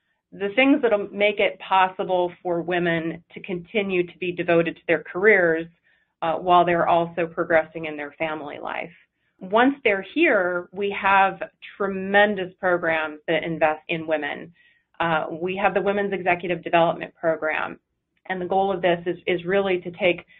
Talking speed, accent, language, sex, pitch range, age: 160 wpm, American, English, female, 165-190 Hz, 30-49